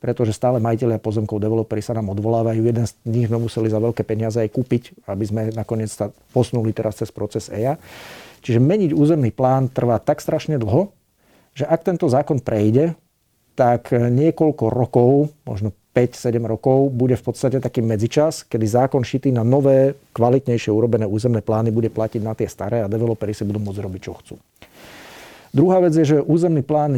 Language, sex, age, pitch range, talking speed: Slovak, male, 50-69, 110-135 Hz, 175 wpm